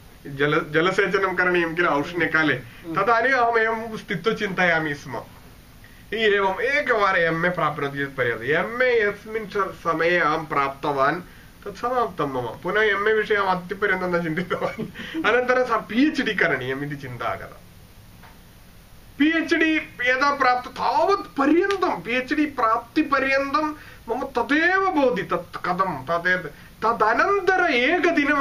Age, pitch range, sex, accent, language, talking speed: 30-49, 165-245 Hz, male, Indian, English, 70 wpm